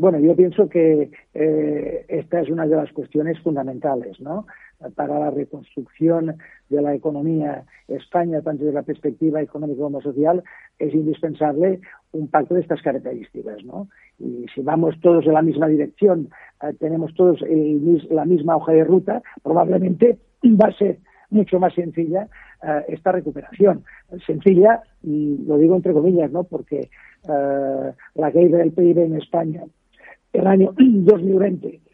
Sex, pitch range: male, 150-180 Hz